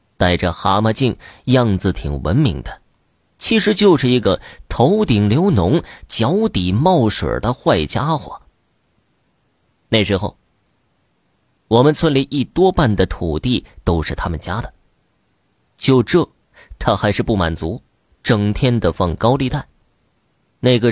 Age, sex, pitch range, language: 30-49, male, 90-130 Hz, Chinese